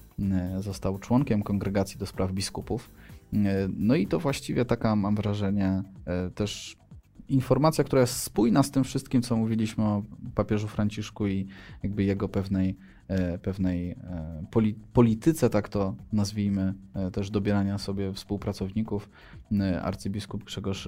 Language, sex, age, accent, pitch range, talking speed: Polish, male, 20-39, native, 95-105 Hz, 120 wpm